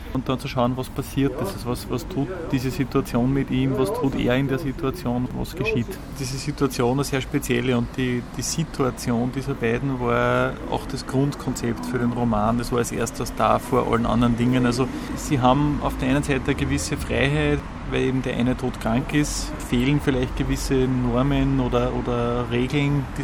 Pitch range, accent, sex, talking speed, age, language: 120-140 Hz, Austrian, male, 190 wpm, 20-39, German